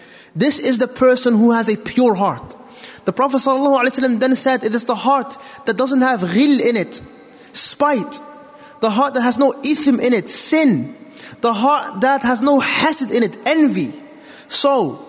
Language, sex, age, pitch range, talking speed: English, male, 20-39, 245-290 Hz, 175 wpm